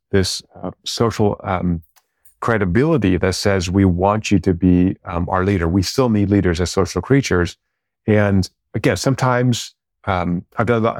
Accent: American